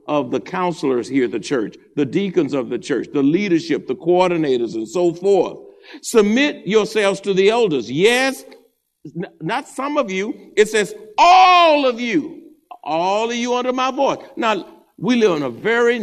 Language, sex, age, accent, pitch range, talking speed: English, male, 50-69, American, 165-255 Hz, 175 wpm